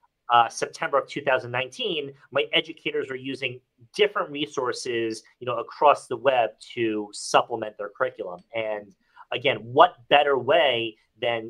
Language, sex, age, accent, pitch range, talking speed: English, male, 40-59, American, 115-185 Hz, 130 wpm